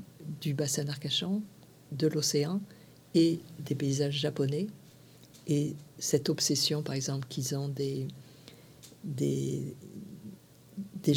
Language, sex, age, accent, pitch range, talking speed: French, female, 50-69, French, 145-175 Hz, 100 wpm